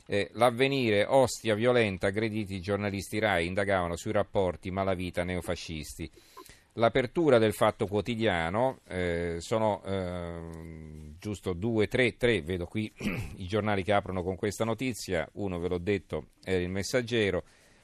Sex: male